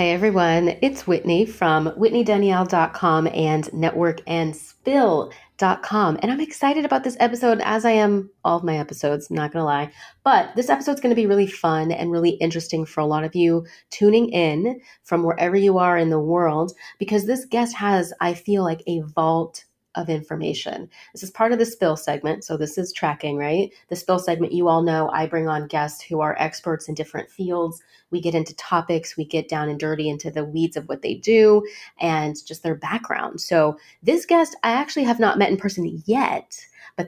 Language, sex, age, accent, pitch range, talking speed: English, female, 30-49, American, 155-200 Hz, 195 wpm